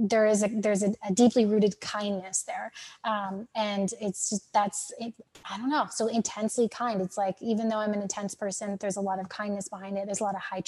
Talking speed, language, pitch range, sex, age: 230 wpm, English, 195-220 Hz, female, 20-39